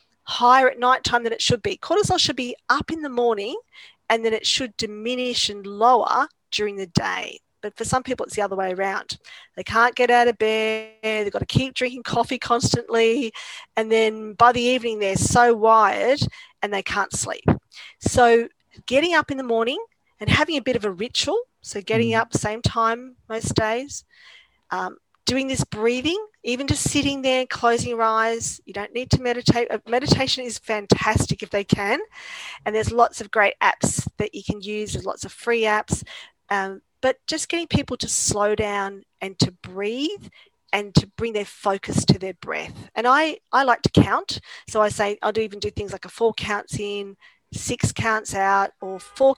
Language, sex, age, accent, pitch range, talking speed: English, female, 40-59, Australian, 210-255 Hz, 190 wpm